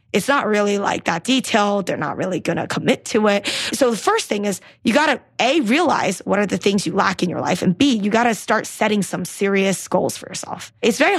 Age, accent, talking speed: 20-39, American, 250 wpm